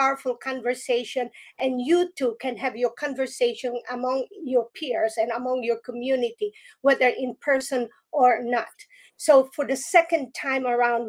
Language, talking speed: English, 145 wpm